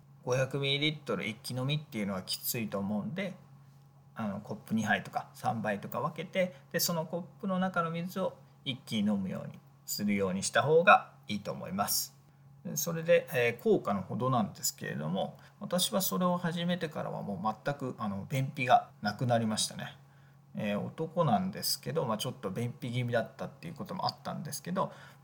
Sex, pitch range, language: male, 135-180 Hz, Japanese